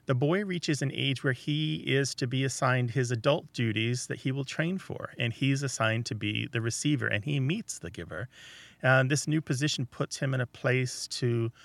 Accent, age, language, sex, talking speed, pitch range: American, 40-59, English, male, 210 wpm, 110-135 Hz